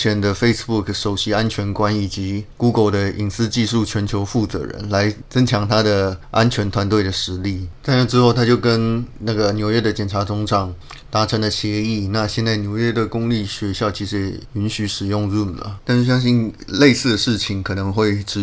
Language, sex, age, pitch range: Chinese, male, 20-39, 100-115 Hz